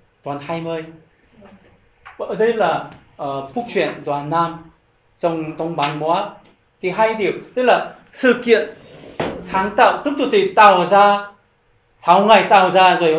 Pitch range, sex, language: 155-205 Hz, male, Korean